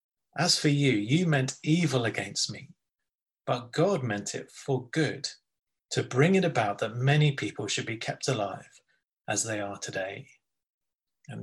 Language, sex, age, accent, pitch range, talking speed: English, male, 30-49, British, 115-145 Hz, 160 wpm